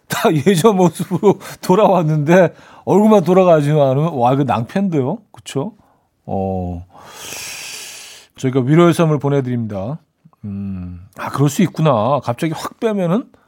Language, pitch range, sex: Korean, 125-180 Hz, male